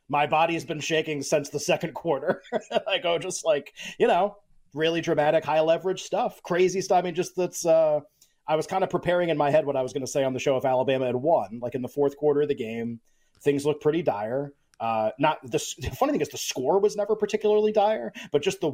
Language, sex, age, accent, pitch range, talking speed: English, male, 30-49, American, 125-160 Hz, 245 wpm